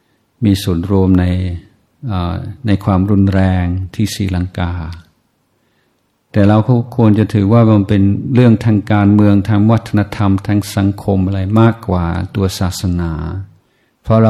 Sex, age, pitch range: male, 50-69, 95-110 Hz